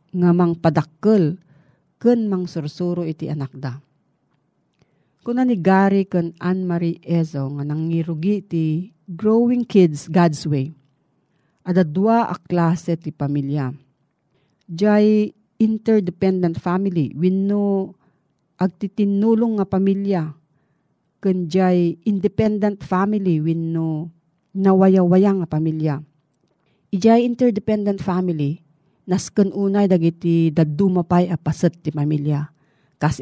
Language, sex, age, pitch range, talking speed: Filipino, female, 40-59, 155-195 Hz, 100 wpm